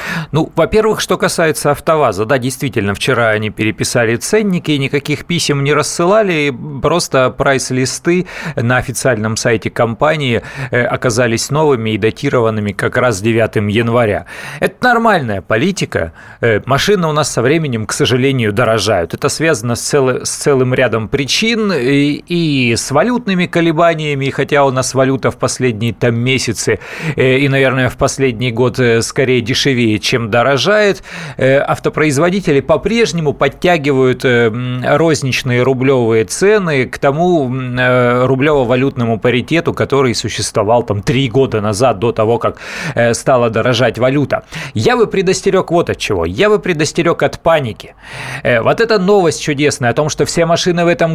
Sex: male